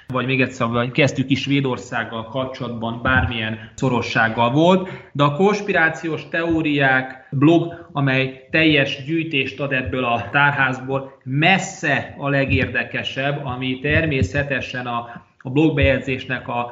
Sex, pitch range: male, 125-150 Hz